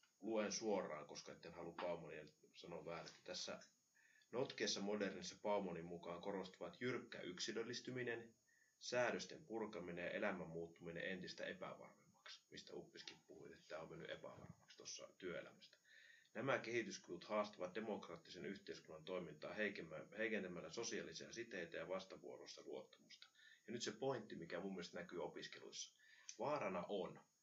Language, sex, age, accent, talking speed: Finnish, male, 30-49, native, 120 wpm